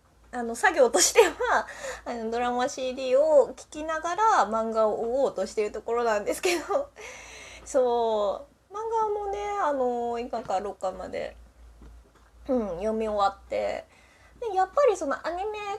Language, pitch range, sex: Japanese, 195-315 Hz, female